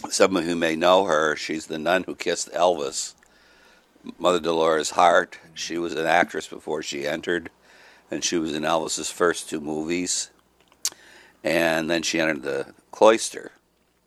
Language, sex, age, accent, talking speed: English, male, 60-79, American, 155 wpm